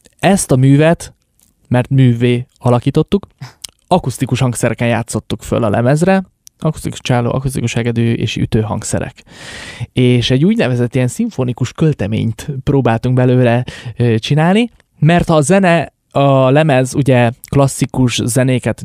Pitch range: 120-140 Hz